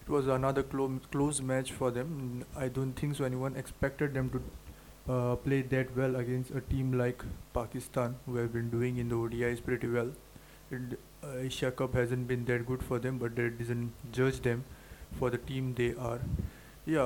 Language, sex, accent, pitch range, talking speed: English, male, Indian, 125-135 Hz, 185 wpm